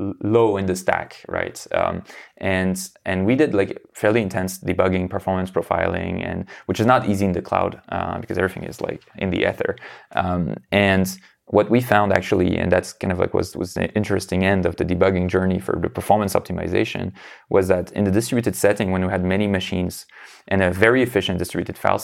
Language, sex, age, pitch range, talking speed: English, male, 20-39, 90-105 Hz, 200 wpm